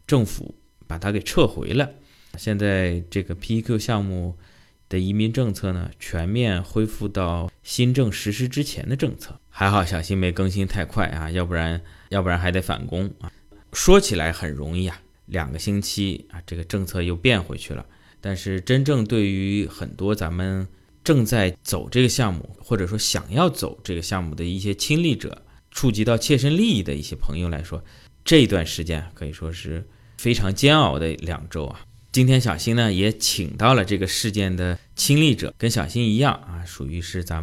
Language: Chinese